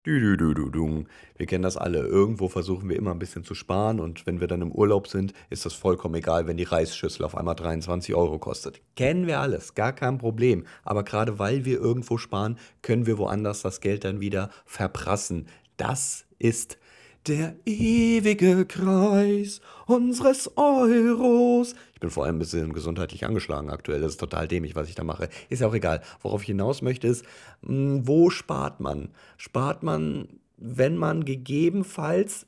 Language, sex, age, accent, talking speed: German, male, 40-59, German, 170 wpm